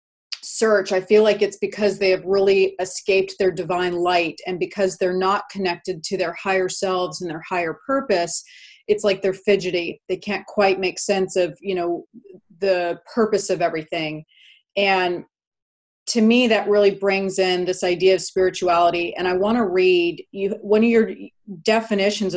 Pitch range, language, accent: 180-205 Hz, English, American